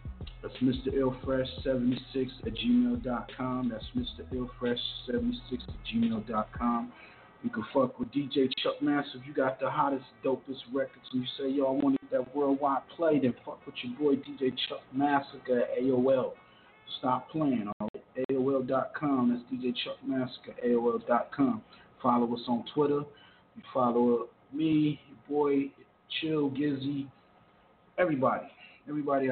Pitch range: 115-140 Hz